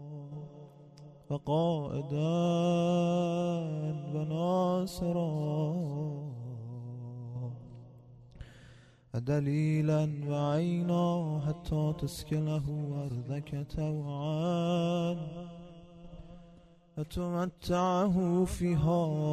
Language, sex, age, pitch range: Persian, male, 20-39, 155-175 Hz